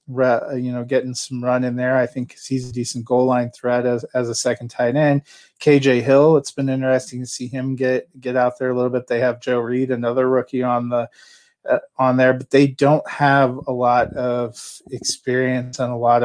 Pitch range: 120-135 Hz